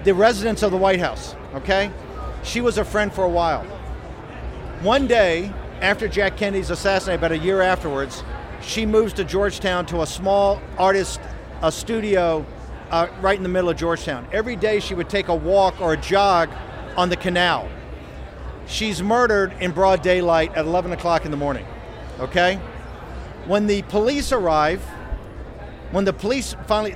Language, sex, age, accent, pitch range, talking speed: English, male, 50-69, American, 165-210 Hz, 165 wpm